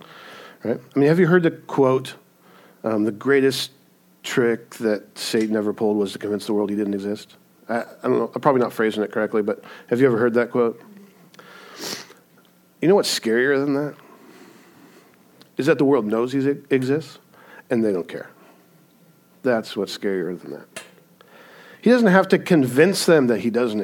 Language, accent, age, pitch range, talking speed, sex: English, American, 50-69, 105-160 Hz, 180 wpm, male